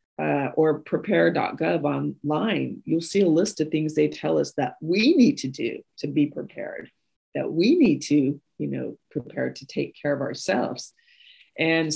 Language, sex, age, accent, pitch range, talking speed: English, female, 40-59, American, 140-185 Hz, 170 wpm